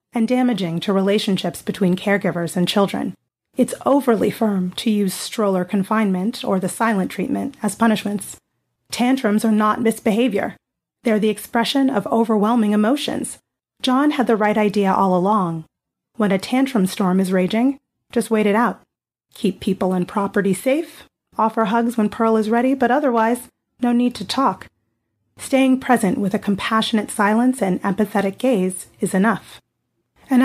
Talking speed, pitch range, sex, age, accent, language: 150 wpm, 200-245 Hz, female, 30-49, American, English